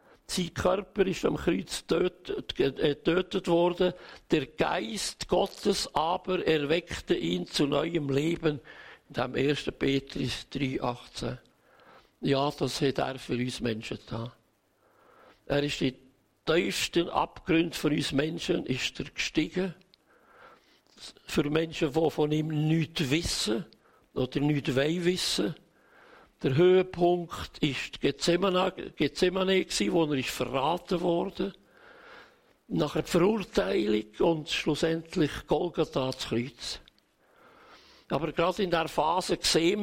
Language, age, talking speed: German, 60-79, 110 wpm